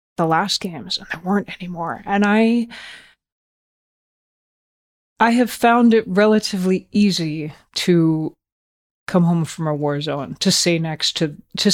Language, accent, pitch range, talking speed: English, American, 160-200 Hz, 140 wpm